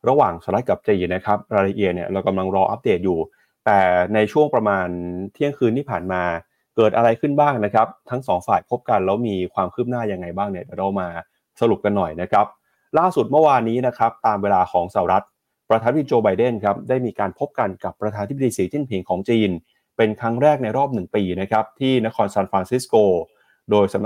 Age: 20-39